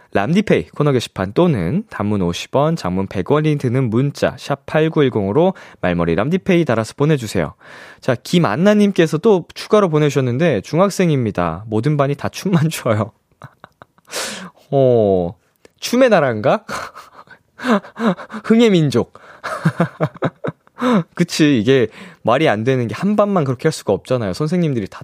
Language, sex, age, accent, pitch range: Korean, male, 20-39, native, 105-175 Hz